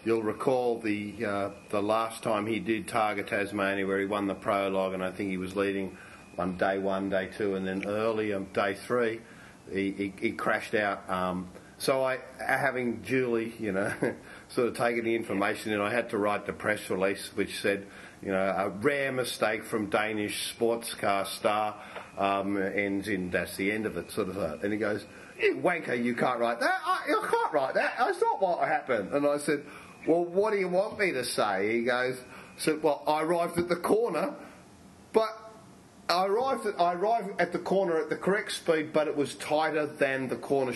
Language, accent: English, Australian